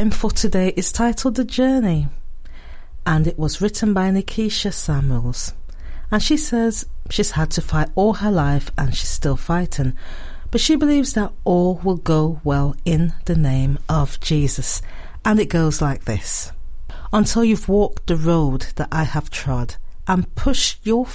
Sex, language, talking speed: female, English, 160 wpm